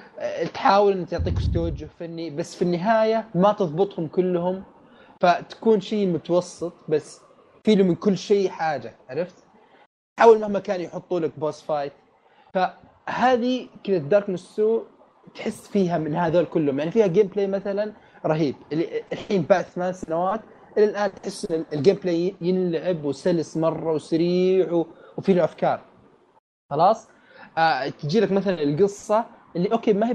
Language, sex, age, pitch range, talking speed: Arabic, male, 30-49, 160-200 Hz, 135 wpm